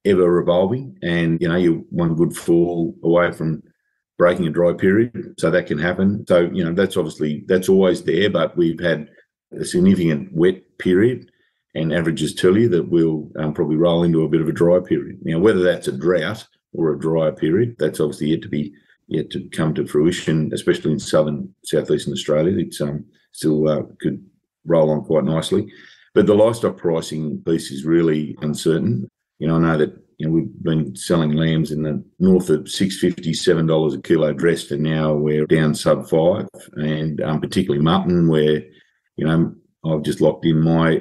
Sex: male